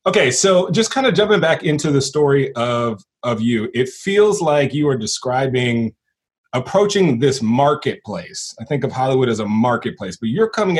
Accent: American